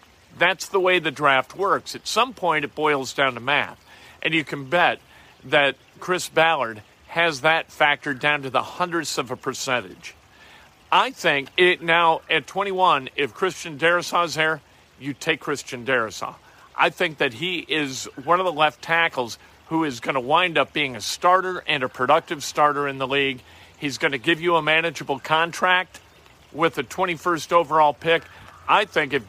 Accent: American